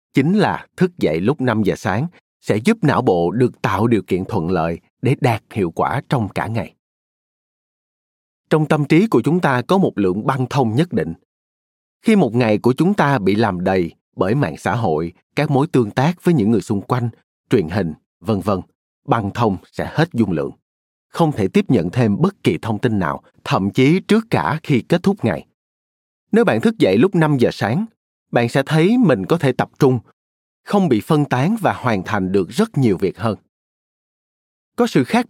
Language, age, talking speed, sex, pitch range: Vietnamese, 30-49, 200 wpm, male, 100-160 Hz